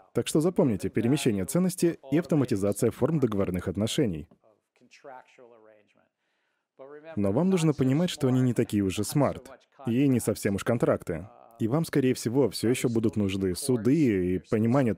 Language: Russian